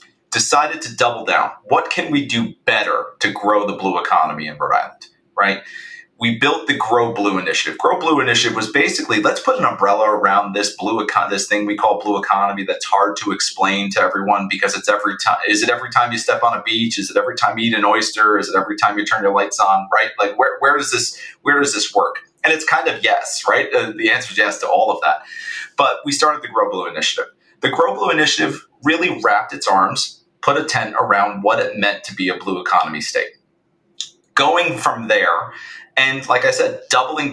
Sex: male